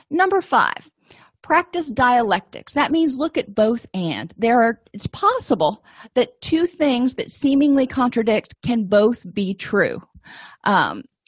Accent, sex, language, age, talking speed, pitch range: American, female, English, 40-59, 120 wpm, 190-245 Hz